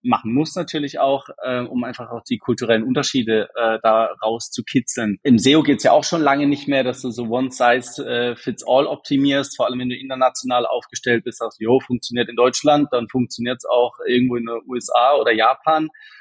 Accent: German